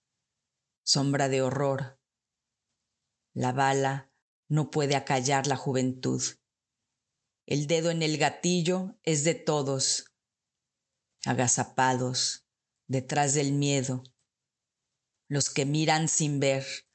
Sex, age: female, 40-59